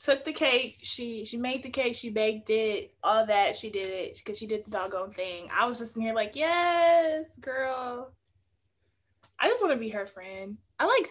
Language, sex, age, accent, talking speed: English, female, 20-39, American, 210 wpm